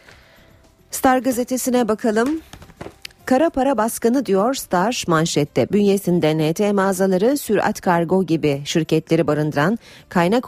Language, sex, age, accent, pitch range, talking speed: Turkish, female, 40-59, native, 150-205 Hz, 105 wpm